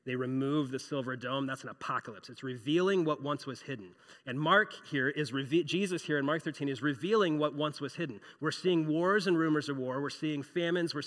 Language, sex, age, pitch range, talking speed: English, male, 30-49, 145-190 Hz, 215 wpm